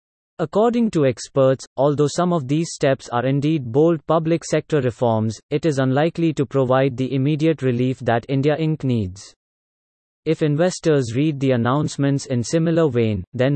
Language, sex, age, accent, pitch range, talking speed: English, male, 30-49, Indian, 130-160 Hz, 155 wpm